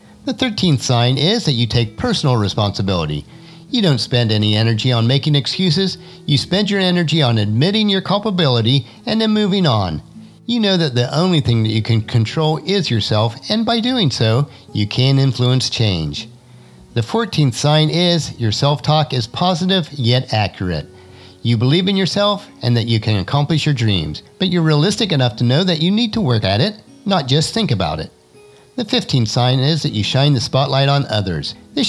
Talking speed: 190 wpm